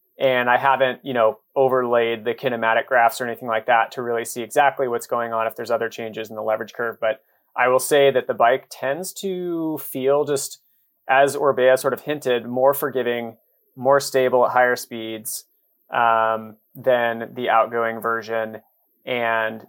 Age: 30-49